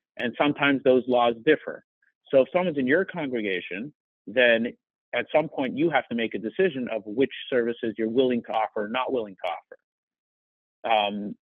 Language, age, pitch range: English, 40-59, 115-135 Hz